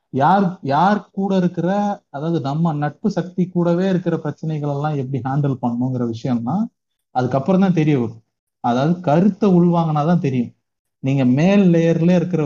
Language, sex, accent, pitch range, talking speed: Tamil, male, native, 125-170 Hz, 135 wpm